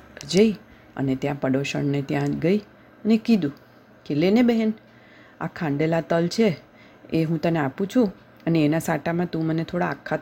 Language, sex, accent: Gujarati, female, native